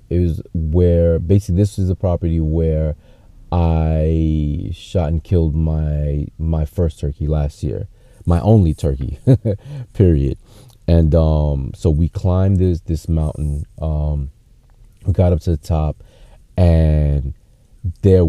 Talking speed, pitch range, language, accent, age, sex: 130 wpm, 75-95 Hz, English, American, 30-49, male